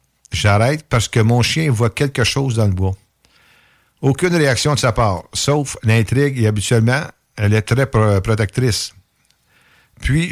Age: 60-79